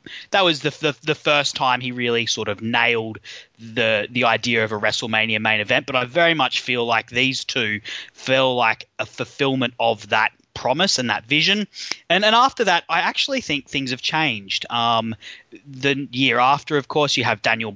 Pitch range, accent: 115-140 Hz, Australian